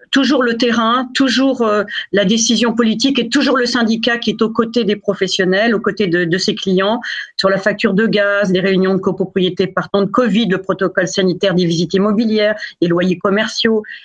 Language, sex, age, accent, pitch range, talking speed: French, female, 40-59, French, 195-235 Hz, 190 wpm